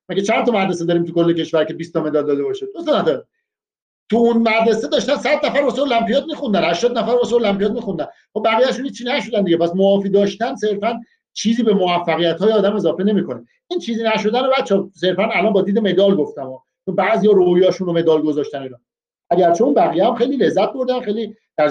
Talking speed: 205 wpm